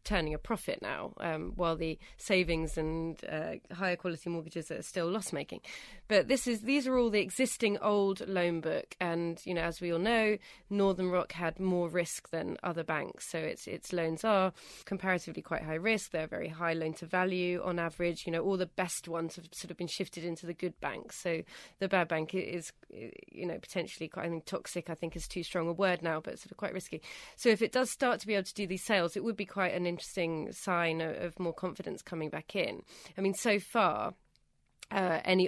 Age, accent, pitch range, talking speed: 20-39, British, 170-195 Hz, 220 wpm